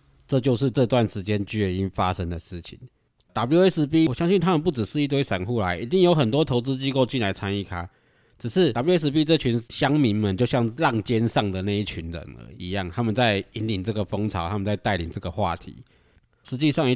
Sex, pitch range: male, 95-130 Hz